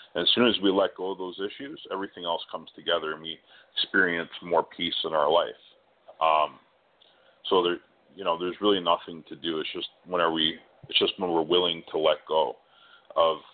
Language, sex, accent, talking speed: English, male, American, 200 wpm